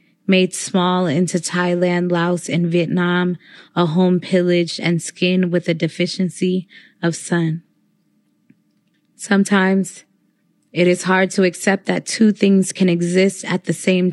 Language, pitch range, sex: English, 175-190 Hz, female